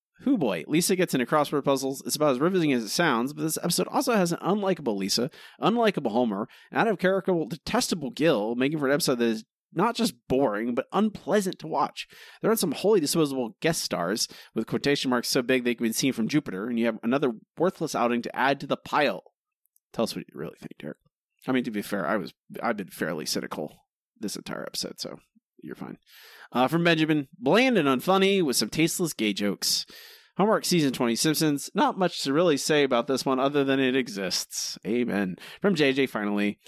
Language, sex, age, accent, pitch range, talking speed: English, male, 30-49, American, 130-215 Hz, 205 wpm